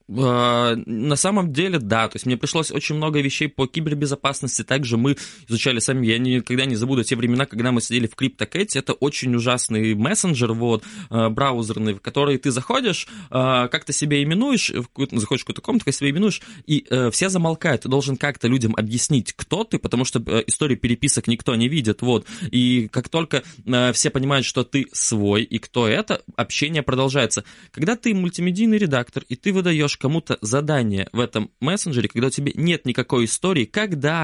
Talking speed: 170 wpm